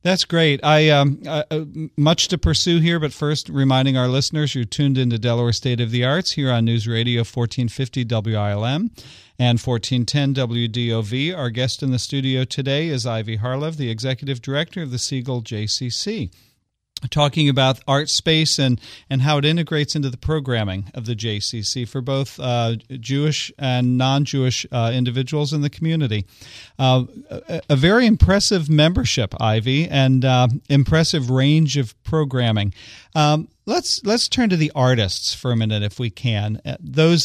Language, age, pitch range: English, 40-59, 115-145 Hz